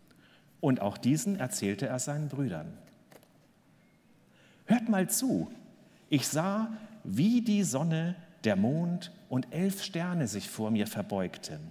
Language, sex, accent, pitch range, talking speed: German, male, German, 130-195 Hz, 125 wpm